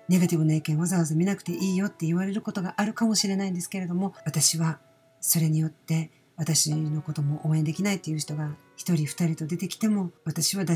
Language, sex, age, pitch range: Japanese, female, 50-69, 155-195 Hz